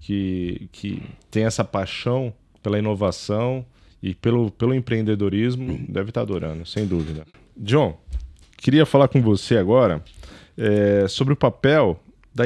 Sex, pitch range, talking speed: male, 90-115 Hz, 130 wpm